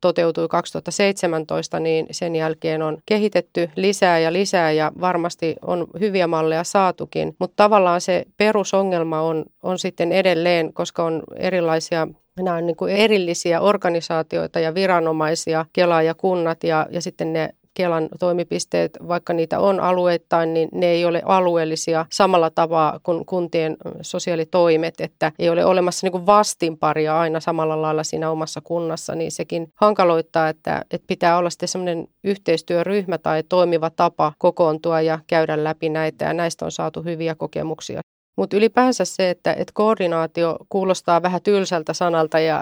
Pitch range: 160-180 Hz